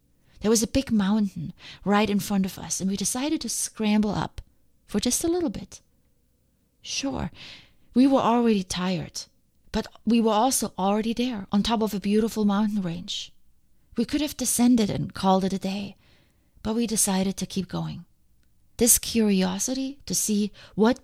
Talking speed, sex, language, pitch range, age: 170 wpm, female, English, 185-220 Hz, 30-49